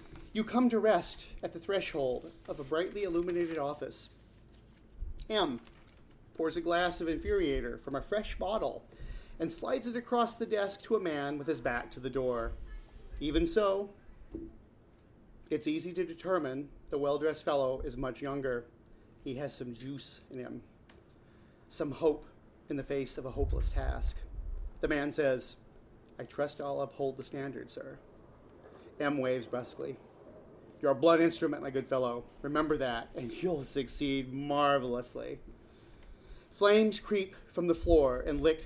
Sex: male